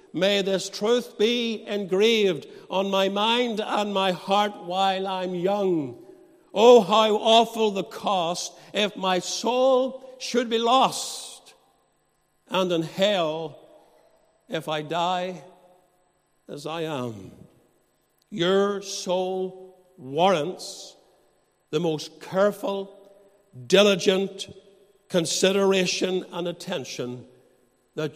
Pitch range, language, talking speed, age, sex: 170-200 Hz, English, 95 wpm, 60-79, male